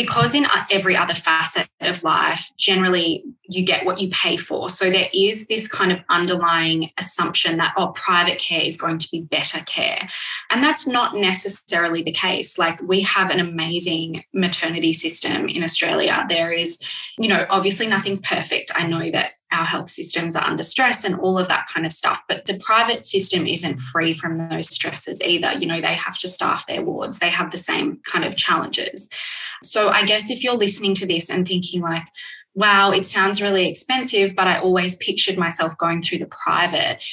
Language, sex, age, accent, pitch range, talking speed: English, female, 20-39, Australian, 165-195 Hz, 195 wpm